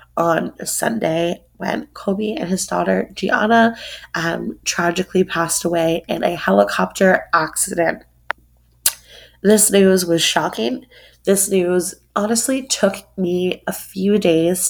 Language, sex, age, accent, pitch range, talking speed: English, female, 20-39, American, 165-200 Hz, 125 wpm